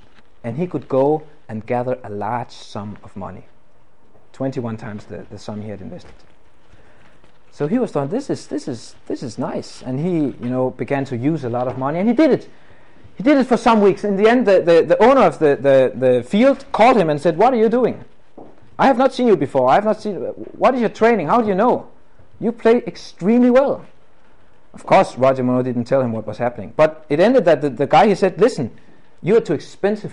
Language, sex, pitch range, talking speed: English, male, 120-200 Hz, 235 wpm